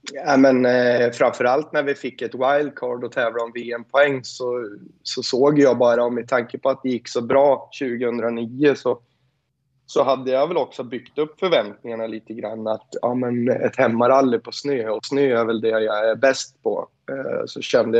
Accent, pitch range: native, 110-130 Hz